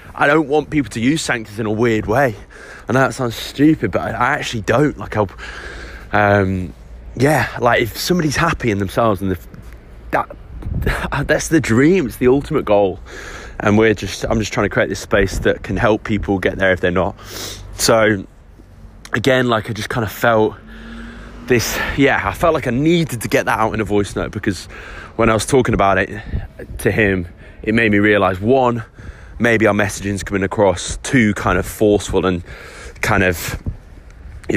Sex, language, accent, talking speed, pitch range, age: male, English, British, 185 wpm, 95-115 Hz, 20-39